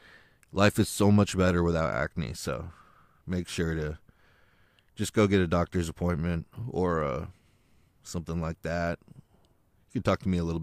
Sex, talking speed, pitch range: male, 165 wpm, 85-100 Hz